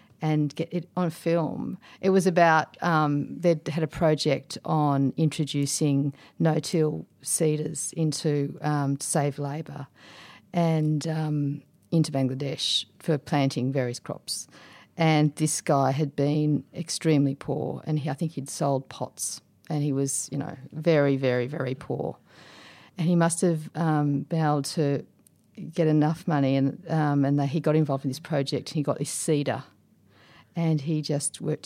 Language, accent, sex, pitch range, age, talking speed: English, Australian, female, 145-170 Hz, 50-69, 155 wpm